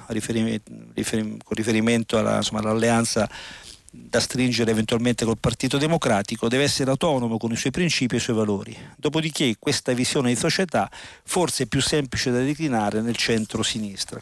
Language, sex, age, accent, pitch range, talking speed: Italian, male, 50-69, native, 110-130 Hz, 150 wpm